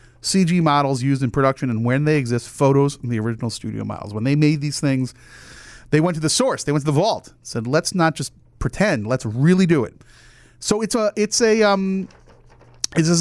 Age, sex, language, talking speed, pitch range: 40-59, male, English, 210 wpm, 120-175 Hz